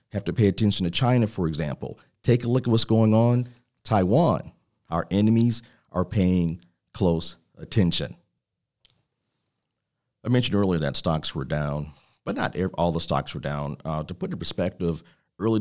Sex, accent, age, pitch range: male, American, 50-69, 90-120 Hz